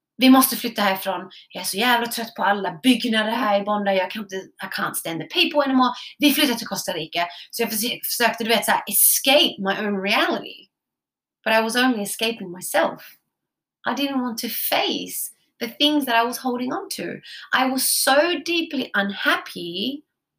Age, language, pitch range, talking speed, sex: 30-49, English, 195-260 Hz, 190 wpm, female